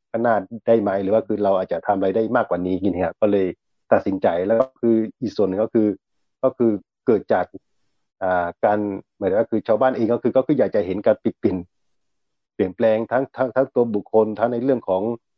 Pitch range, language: 100-120 Hz, Thai